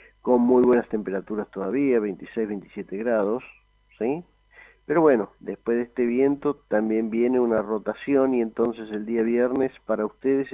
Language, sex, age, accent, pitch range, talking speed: Spanish, male, 50-69, Argentinian, 105-125 Hz, 150 wpm